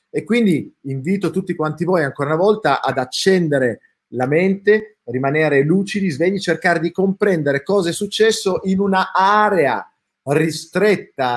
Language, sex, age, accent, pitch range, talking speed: Italian, male, 30-49, native, 125-185 Hz, 130 wpm